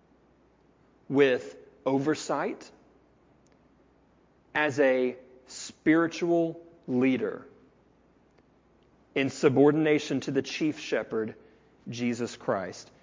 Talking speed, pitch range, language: 65 wpm, 130-170 Hz, English